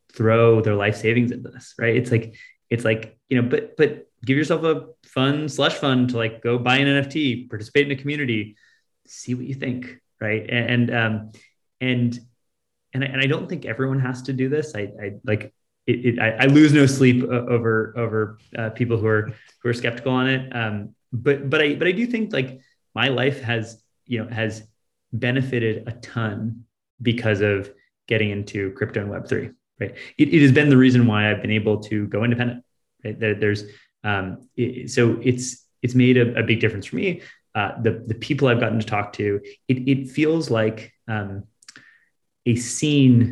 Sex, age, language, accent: male, 20-39, English, American